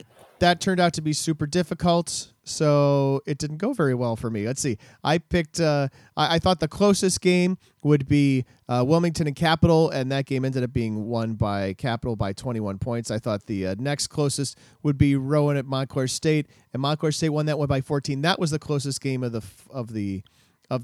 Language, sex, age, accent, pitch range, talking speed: English, male, 40-59, American, 125-160 Hz, 215 wpm